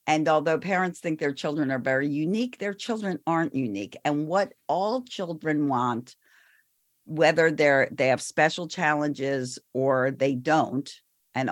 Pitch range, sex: 150-190 Hz, female